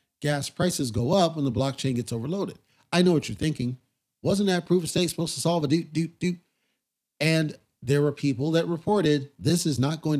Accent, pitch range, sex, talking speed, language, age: American, 135-175 Hz, male, 210 wpm, English, 40-59